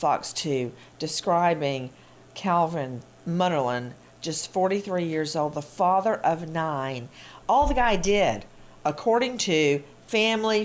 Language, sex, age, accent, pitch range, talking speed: English, female, 50-69, American, 165-235 Hz, 115 wpm